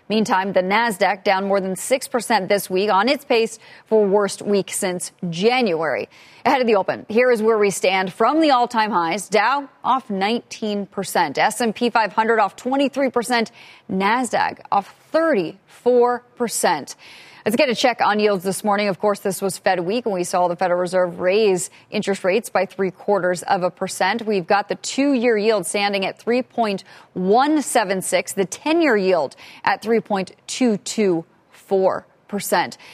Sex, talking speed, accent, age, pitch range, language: female, 150 wpm, American, 30-49, 190-230 Hz, English